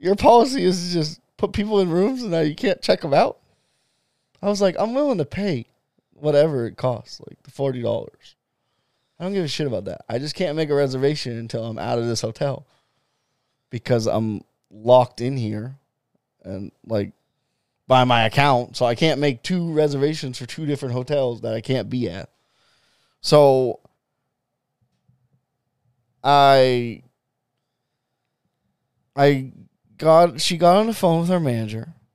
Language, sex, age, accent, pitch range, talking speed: English, male, 20-39, American, 120-160 Hz, 160 wpm